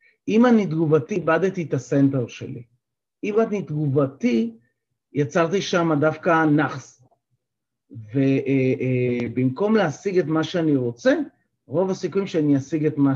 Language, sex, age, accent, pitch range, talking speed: Hebrew, male, 40-59, native, 135-185 Hz, 120 wpm